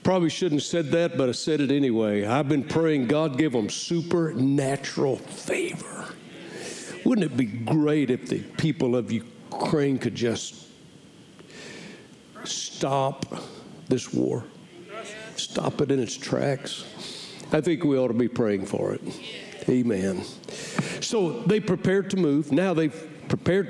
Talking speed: 140 wpm